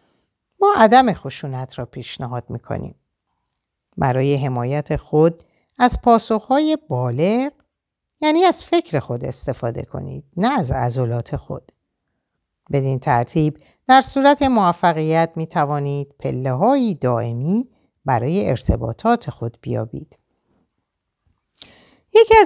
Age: 50-69